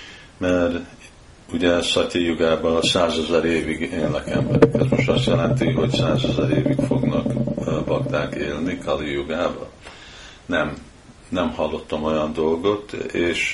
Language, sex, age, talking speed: Hungarian, male, 50-69, 115 wpm